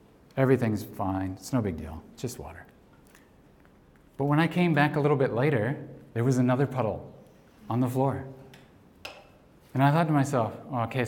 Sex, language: male, English